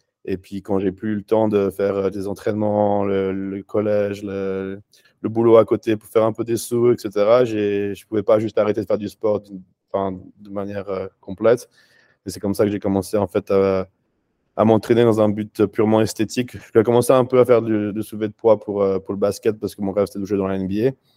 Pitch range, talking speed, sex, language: 95-105 Hz, 240 wpm, male, French